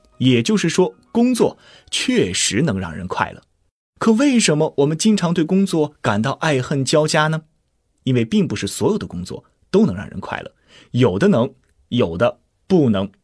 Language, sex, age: Chinese, male, 20-39